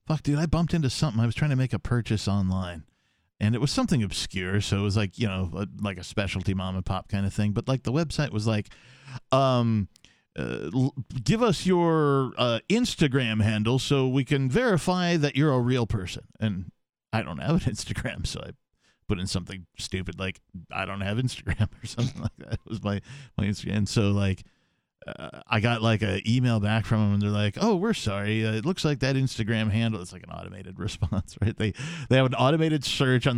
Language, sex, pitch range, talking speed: English, male, 105-135 Hz, 220 wpm